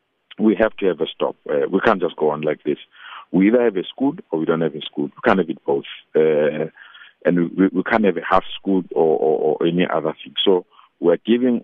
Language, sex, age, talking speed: English, male, 50-69, 245 wpm